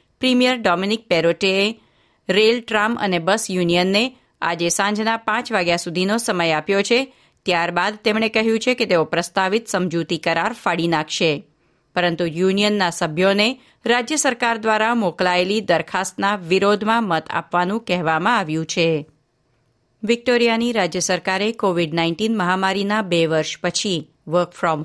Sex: female